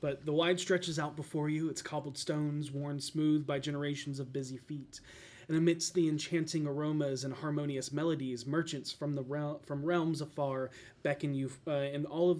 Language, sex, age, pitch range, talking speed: English, male, 30-49, 135-160 Hz, 180 wpm